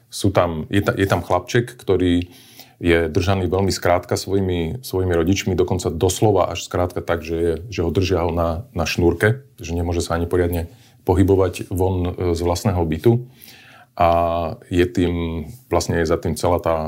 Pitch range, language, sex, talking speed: 85-100 Hz, Slovak, male, 160 wpm